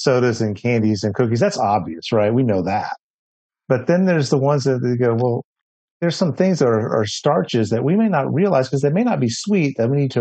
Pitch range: 110-140 Hz